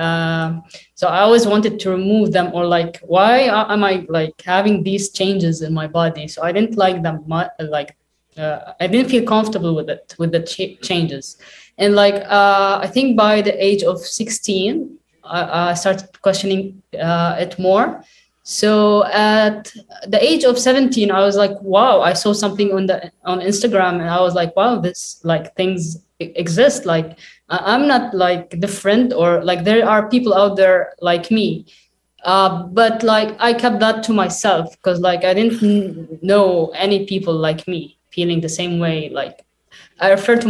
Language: English